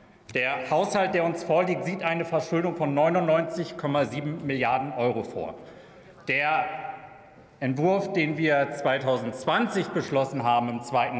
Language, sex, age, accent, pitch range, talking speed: German, male, 40-59, German, 145-200 Hz, 115 wpm